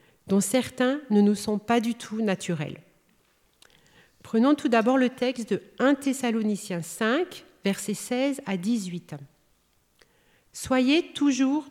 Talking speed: 125 wpm